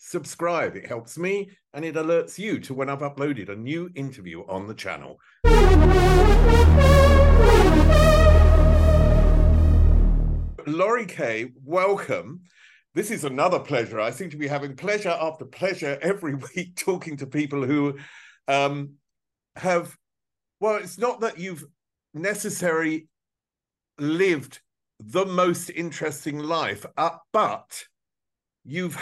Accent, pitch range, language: British, 125-170 Hz, English